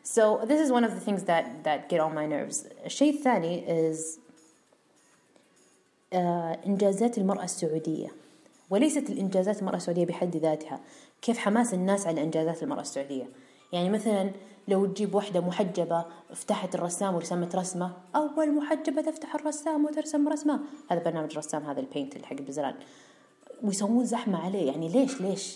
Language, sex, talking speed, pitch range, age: Arabic, female, 150 wpm, 170-265 Hz, 20-39